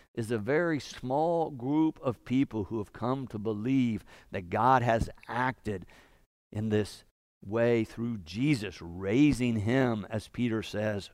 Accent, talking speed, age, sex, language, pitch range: American, 140 wpm, 50-69, male, English, 125-180 Hz